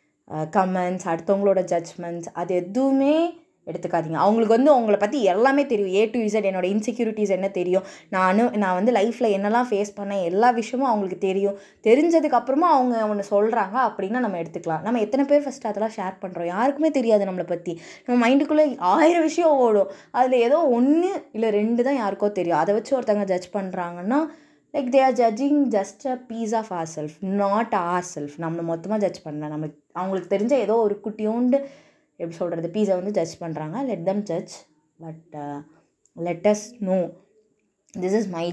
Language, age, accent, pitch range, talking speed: Tamil, 20-39, native, 170-240 Hz, 160 wpm